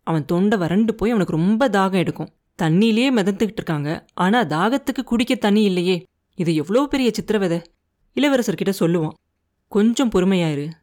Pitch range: 165-220 Hz